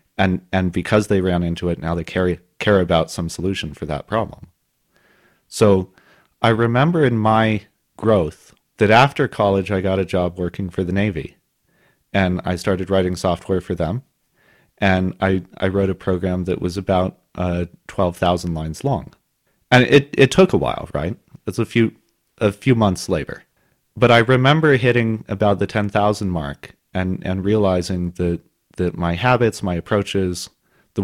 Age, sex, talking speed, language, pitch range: 30-49, male, 170 wpm, English, 95-120 Hz